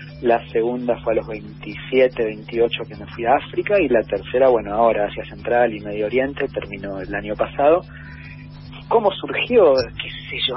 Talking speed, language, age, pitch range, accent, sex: 175 wpm, Spanish, 40-59, 110-145 Hz, Argentinian, male